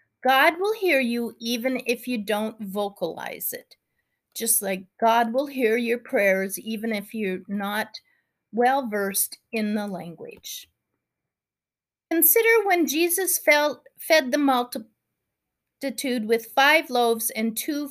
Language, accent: English, American